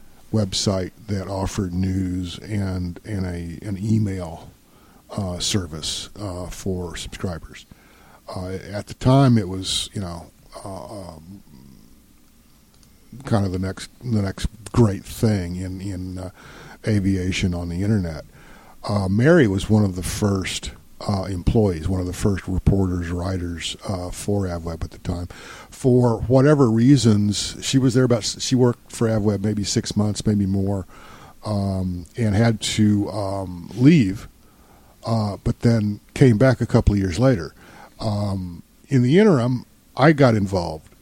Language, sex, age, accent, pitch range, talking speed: English, male, 50-69, American, 90-110 Hz, 145 wpm